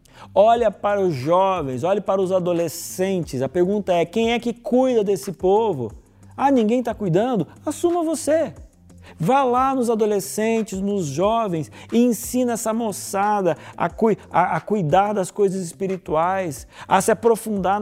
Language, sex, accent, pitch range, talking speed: Portuguese, male, Brazilian, 155-235 Hz, 150 wpm